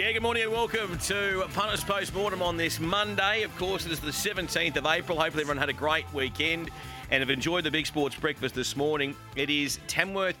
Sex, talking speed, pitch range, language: male, 215 wpm, 130-155 Hz, English